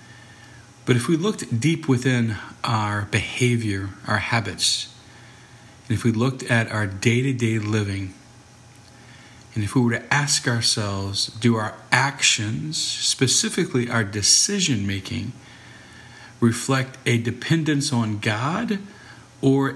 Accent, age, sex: American, 40-59, male